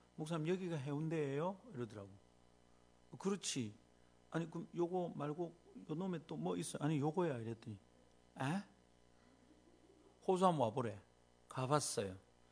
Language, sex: Korean, male